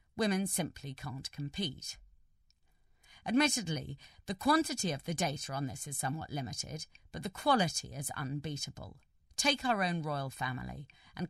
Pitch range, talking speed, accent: 135-185 Hz, 140 wpm, British